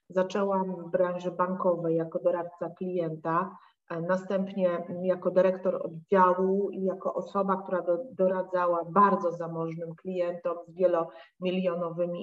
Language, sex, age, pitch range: Polish, female, 30-49, 170-190 Hz